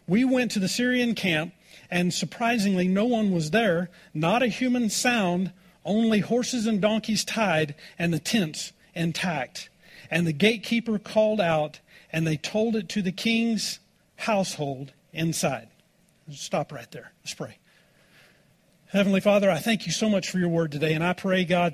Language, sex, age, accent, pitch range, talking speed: English, male, 40-59, American, 160-200 Hz, 165 wpm